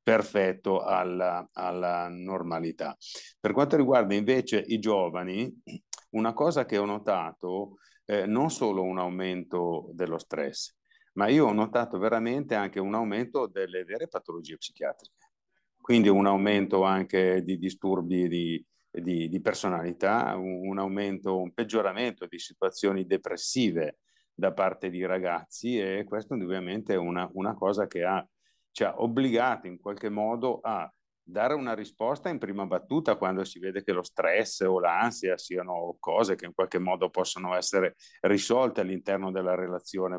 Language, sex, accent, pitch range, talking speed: Italian, male, native, 90-105 Hz, 140 wpm